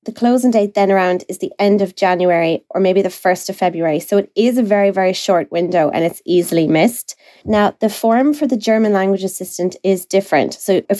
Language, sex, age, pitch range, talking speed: English, female, 20-39, 180-210 Hz, 220 wpm